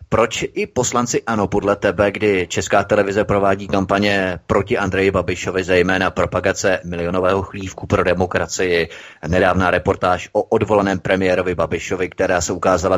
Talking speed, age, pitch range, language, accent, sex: 135 wpm, 30-49, 95-110 Hz, Czech, native, male